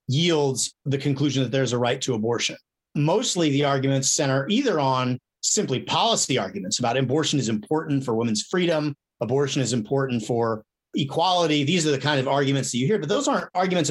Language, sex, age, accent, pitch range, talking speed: English, male, 40-59, American, 130-165 Hz, 185 wpm